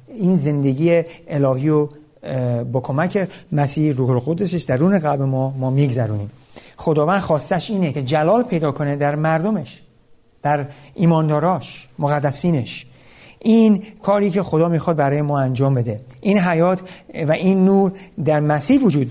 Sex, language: male, Persian